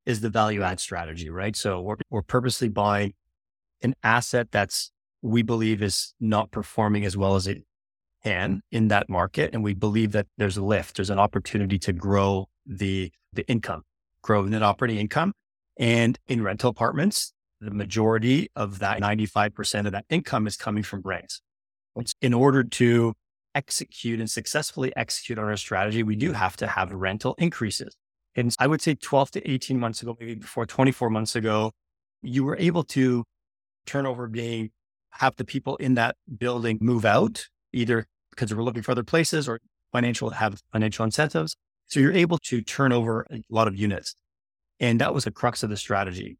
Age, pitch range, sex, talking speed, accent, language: 30-49, 105-120 Hz, male, 180 wpm, American, English